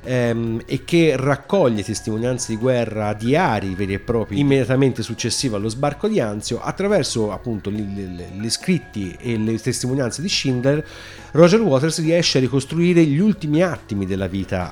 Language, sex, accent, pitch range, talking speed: Italian, male, native, 100-130 Hz, 150 wpm